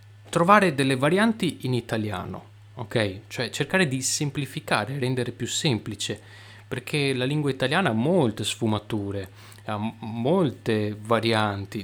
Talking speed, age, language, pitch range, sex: 115 wpm, 30-49, Italian, 105-135 Hz, male